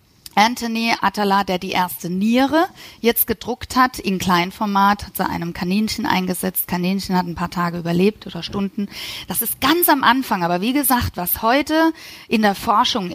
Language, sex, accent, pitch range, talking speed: German, female, German, 175-230 Hz, 165 wpm